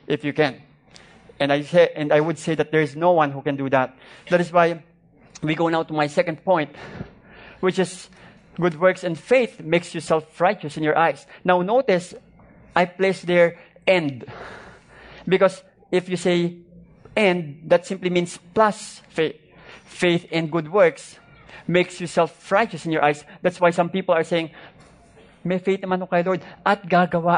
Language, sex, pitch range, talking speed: English, male, 150-180 Hz, 175 wpm